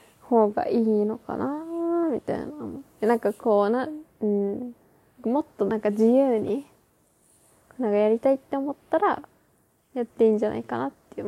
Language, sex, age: Japanese, female, 20-39